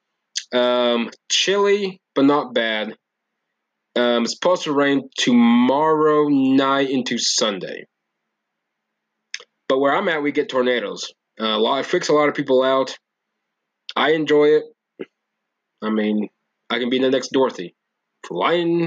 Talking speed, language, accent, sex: 135 wpm, English, American, male